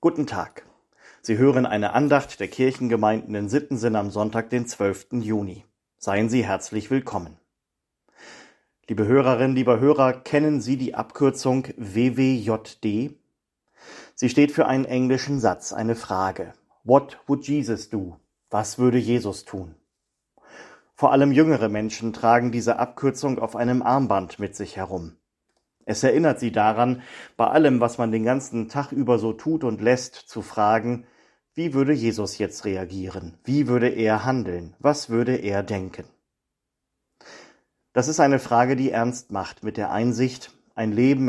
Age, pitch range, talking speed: 30-49, 105-130 Hz, 145 wpm